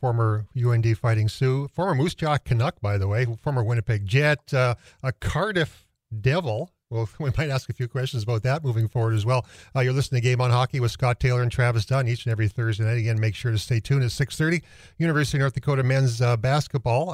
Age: 40-59